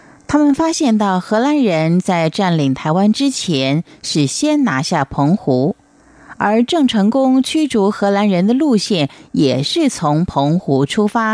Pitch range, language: 145-210 Hz, Chinese